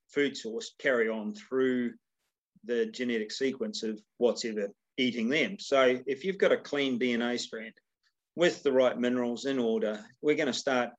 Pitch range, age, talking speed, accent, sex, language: 120-140 Hz, 40-59, 170 wpm, Australian, male, English